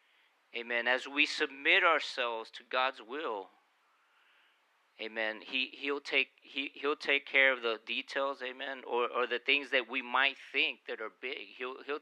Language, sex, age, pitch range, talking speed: English, male, 40-59, 120-155 Hz, 165 wpm